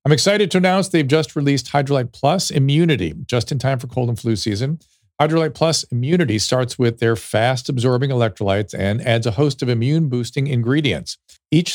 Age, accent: 50-69, American